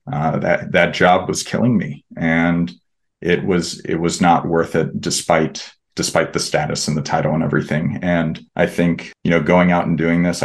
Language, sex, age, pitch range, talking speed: English, male, 30-49, 85-90 Hz, 195 wpm